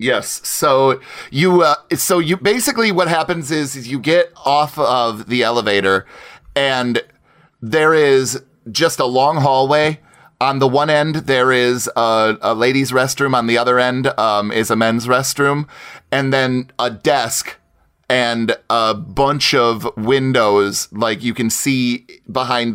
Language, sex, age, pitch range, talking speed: English, male, 30-49, 115-140 Hz, 150 wpm